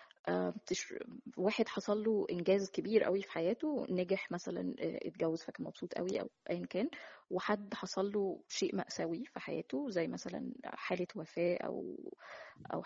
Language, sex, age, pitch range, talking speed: Arabic, female, 20-39, 175-225 Hz, 145 wpm